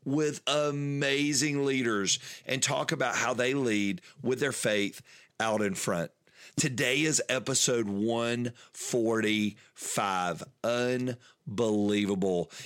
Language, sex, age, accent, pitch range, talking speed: English, male, 40-59, American, 105-130 Hz, 95 wpm